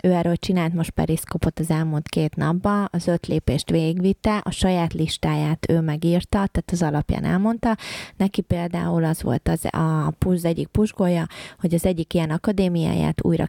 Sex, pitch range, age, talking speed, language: female, 160-185 Hz, 20-39, 165 wpm, Hungarian